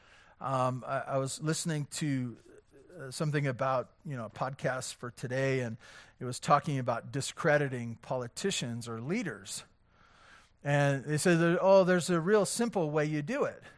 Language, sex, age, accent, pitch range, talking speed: English, male, 40-59, American, 140-185 Hz, 155 wpm